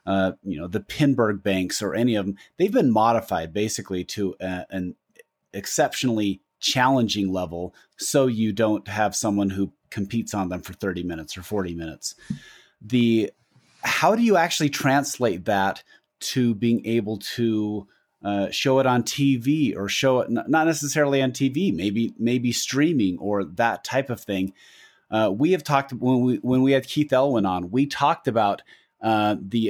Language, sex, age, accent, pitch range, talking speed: English, male, 30-49, American, 100-130 Hz, 170 wpm